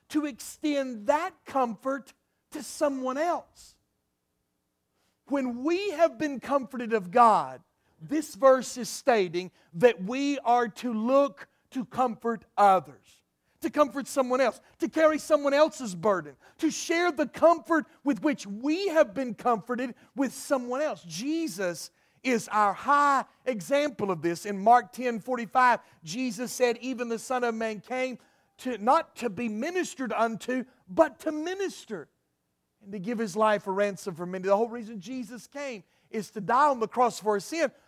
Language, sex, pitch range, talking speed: English, male, 225-310 Hz, 155 wpm